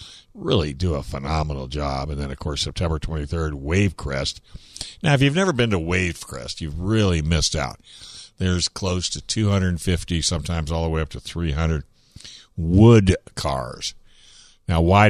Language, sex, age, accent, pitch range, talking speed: English, male, 60-79, American, 80-105 Hz, 150 wpm